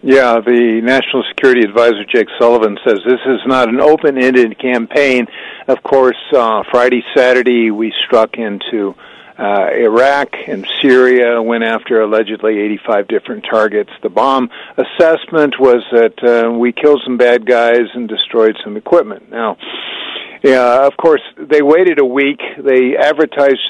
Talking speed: 145 wpm